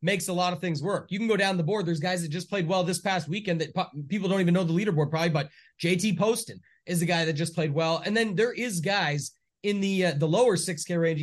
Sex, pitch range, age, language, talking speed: male, 165-200 Hz, 30-49, English, 275 wpm